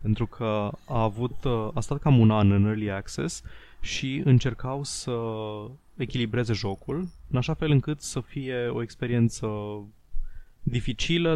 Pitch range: 105-125 Hz